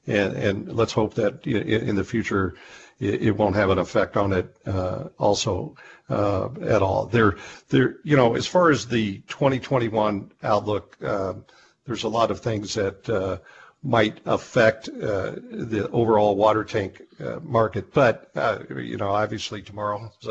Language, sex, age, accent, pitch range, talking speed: English, male, 60-79, American, 100-125 Hz, 160 wpm